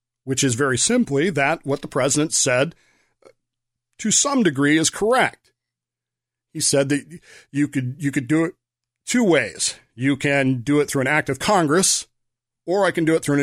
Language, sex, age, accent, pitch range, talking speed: English, male, 40-59, American, 125-150 Hz, 185 wpm